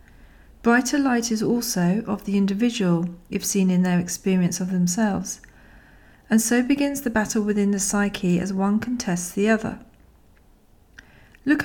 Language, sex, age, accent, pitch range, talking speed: English, female, 40-59, British, 185-230 Hz, 145 wpm